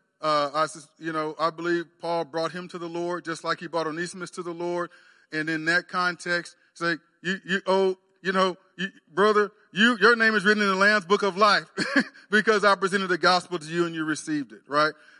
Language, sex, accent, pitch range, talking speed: English, male, American, 145-190 Hz, 220 wpm